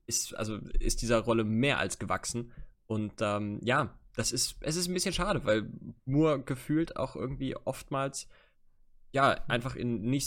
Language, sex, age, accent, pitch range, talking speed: German, male, 20-39, German, 110-135 Hz, 165 wpm